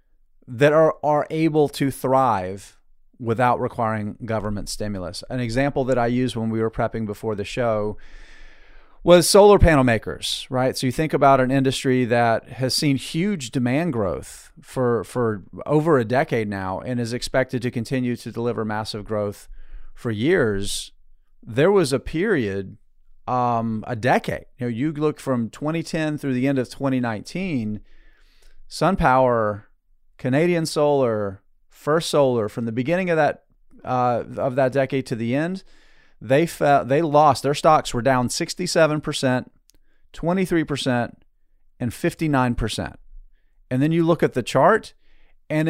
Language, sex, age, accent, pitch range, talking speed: English, male, 40-59, American, 110-145 Hz, 145 wpm